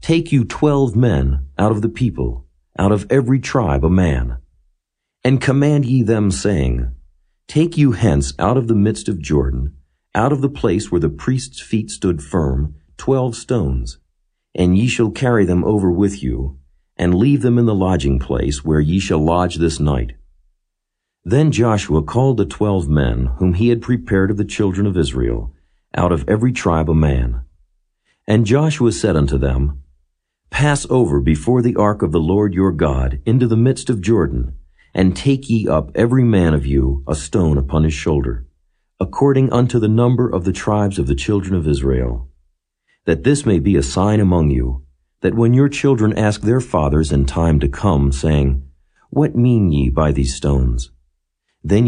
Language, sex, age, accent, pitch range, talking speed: English, male, 50-69, American, 70-110 Hz, 180 wpm